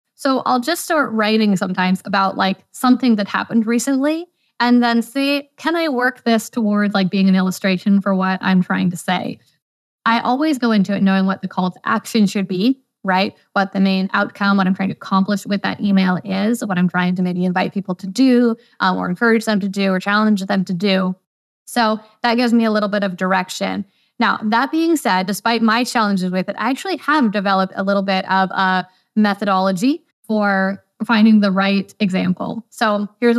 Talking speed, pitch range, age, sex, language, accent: 200 wpm, 190-235 Hz, 20-39, female, English, American